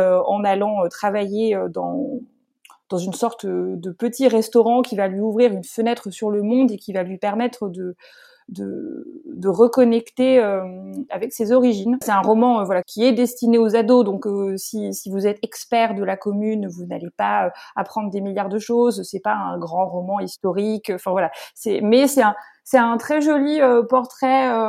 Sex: female